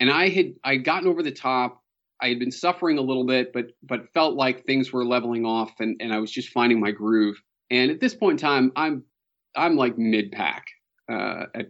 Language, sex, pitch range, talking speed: English, male, 110-130 Hz, 225 wpm